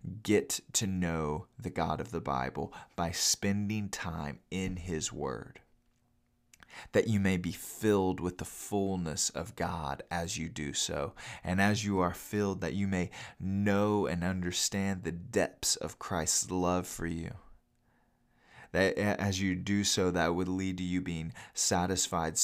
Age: 20-39